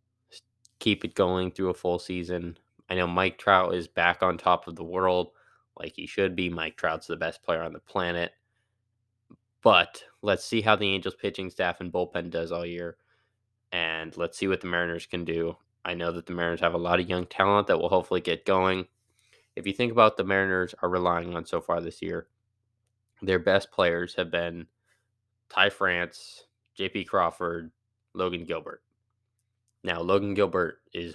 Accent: American